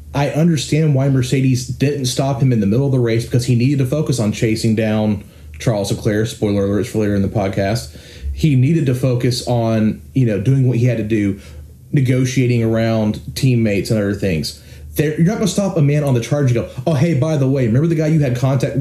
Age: 30-49